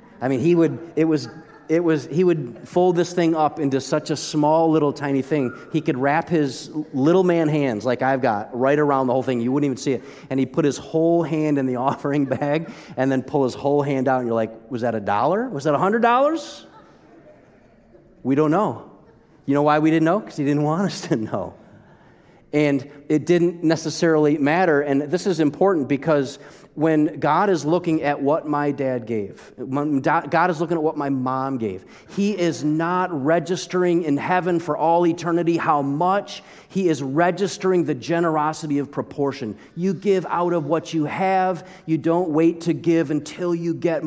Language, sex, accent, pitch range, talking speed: English, male, American, 140-175 Hz, 195 wpm